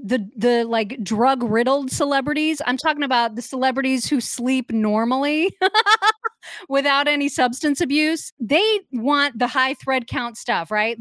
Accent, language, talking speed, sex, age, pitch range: American, English, 140 wpm, female, 30-49, 225-285 Hz